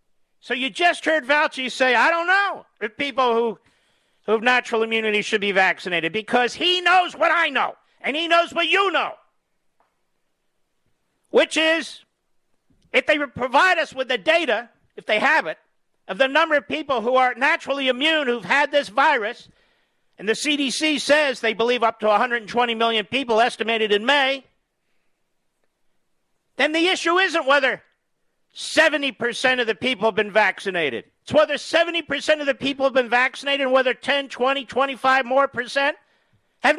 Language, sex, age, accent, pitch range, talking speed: English, male, 50-69, American, 245-315 Hz, 165 wpm